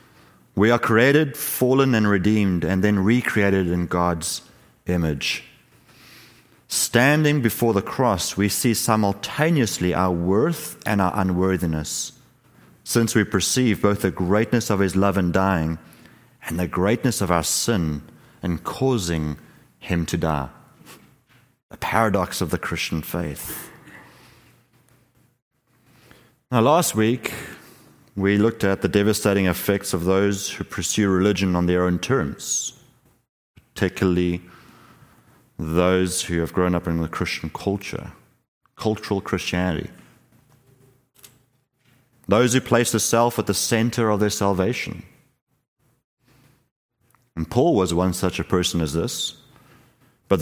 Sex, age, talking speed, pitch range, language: male, 30-49, 125 wpm, 90-120 Hz, English